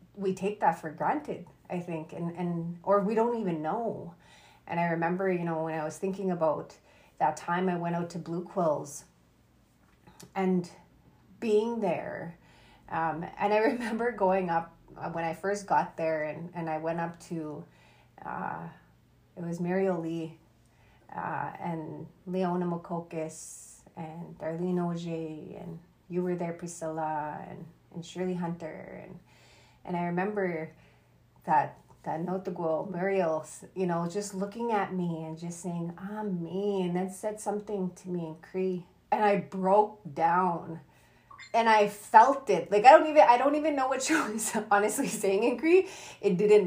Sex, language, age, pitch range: female, English, 30-49, 165-195 Hz